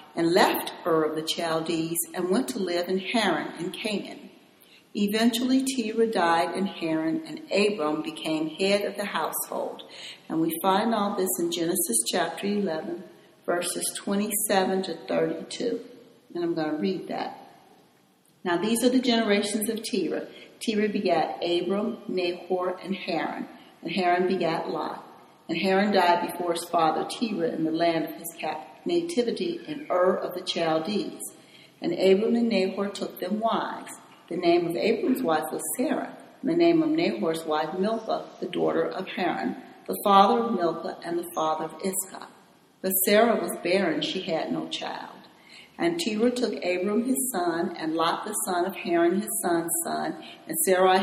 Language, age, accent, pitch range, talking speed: English, 60-79, American, 170-215 Hz, 165 wpm